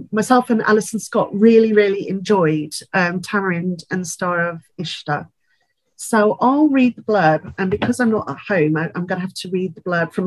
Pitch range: 180-230 Hz